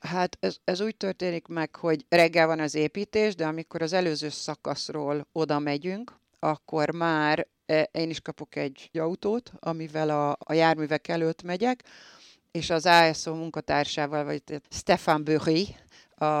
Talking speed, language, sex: 145 wpm, Hungarian, female